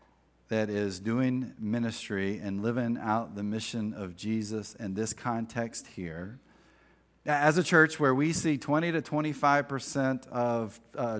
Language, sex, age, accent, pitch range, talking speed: English, male, 40-59, American, 110-165 Hz, 140 wpm